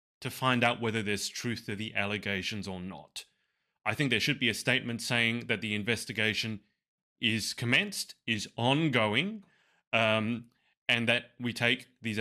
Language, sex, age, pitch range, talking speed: English, male, 20-39, 110-135 Hz, 155 wpm